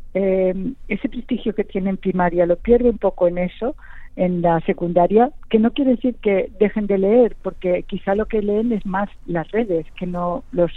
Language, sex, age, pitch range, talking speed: Spanish, female, 50-69, 180-215 Hz, 200 wpm